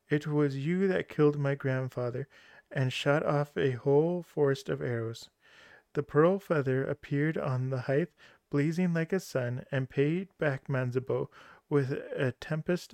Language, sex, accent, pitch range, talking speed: English, male, American, 130-155 Hz, 155 wpm